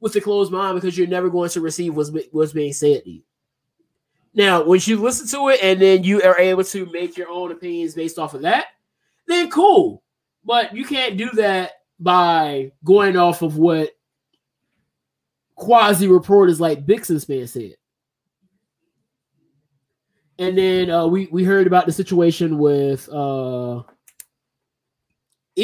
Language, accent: English, American